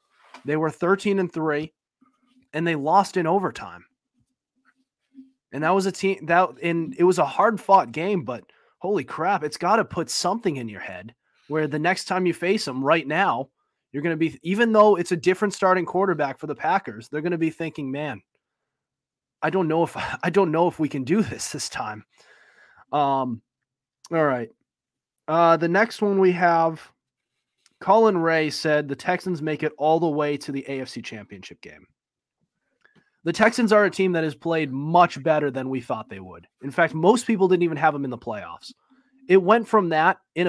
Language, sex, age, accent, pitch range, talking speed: English, male, 20-39, American, 145-190 Hz, 195 wpm